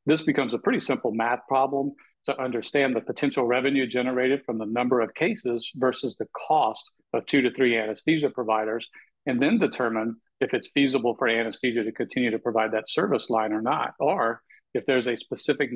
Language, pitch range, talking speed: English, 115-135 Hz, 185 wpm